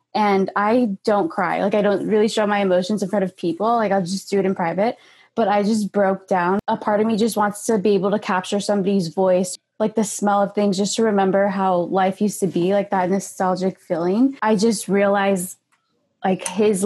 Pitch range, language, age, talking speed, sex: 195-220 Hz, English, 20-39, 220 wpm, female